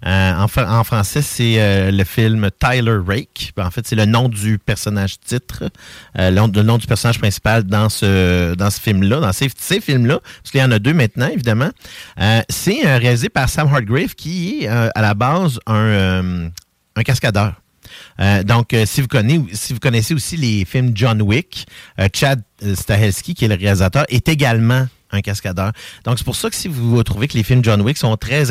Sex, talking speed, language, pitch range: male, 195 wpm, French, 100-130 Hz